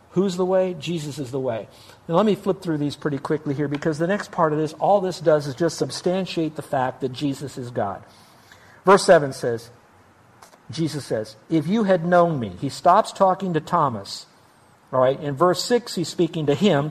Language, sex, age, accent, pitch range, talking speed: English, male, 50-69, American, 145-185 Hz, 205 wpm